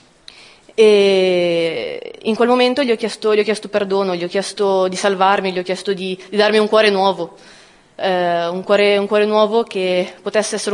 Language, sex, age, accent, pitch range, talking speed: Italian, female, 20-39, native, 185-215 Hz, 175 wpm